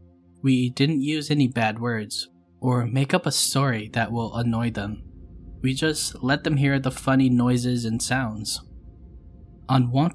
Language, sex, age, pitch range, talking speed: English, male, 10-29, 90-130 Hz, 160 wpm